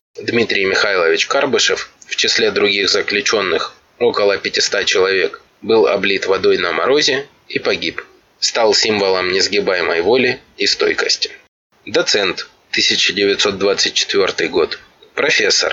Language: Russian